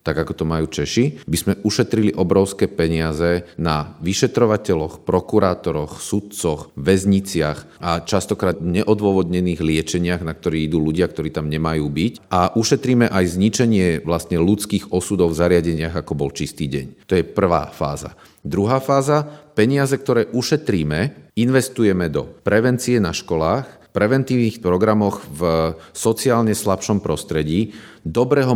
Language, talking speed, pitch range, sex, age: Slovak, 130 wpm, 90-120 Hz, male, 40-59